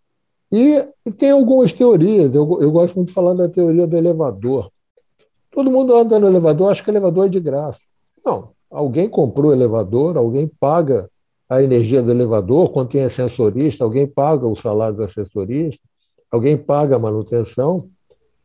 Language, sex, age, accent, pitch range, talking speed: Portuguese, male, 60-79, Brazilian, 130-210 Hz, 165 wpm